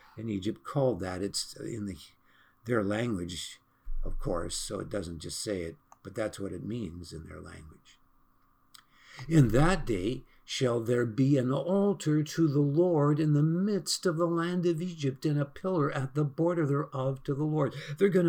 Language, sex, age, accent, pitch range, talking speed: English, male, 60-79, American, 110-155 Hz, 185 wpm